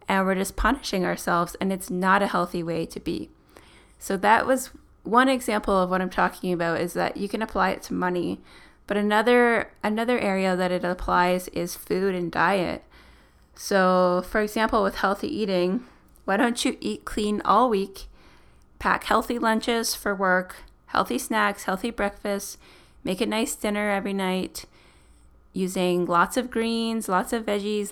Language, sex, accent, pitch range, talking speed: English, female, American, 180-215 Hz, 165 wpm